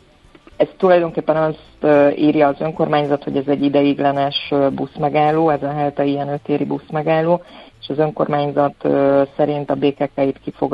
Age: 30-49